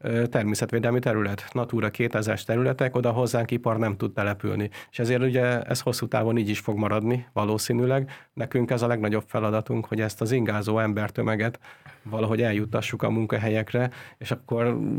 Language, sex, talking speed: Hungarian, male, 150 wpm